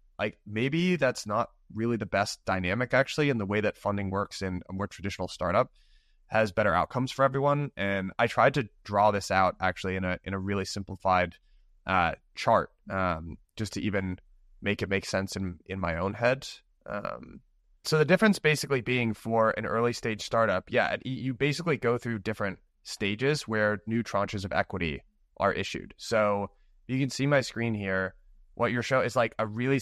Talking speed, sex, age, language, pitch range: 185 wpm, male, 20-39, English, 95-120 Hz